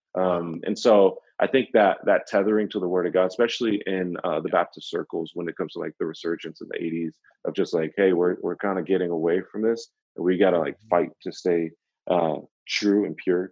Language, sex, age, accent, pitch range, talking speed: English, male, 30-49, American, 90-110 Hz, 230 wpm